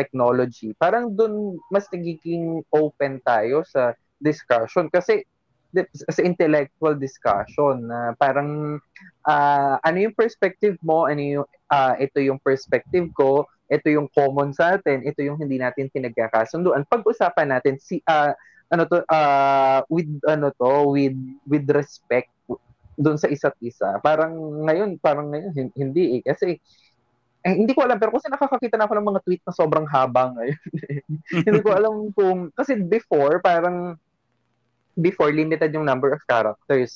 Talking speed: 150 wpm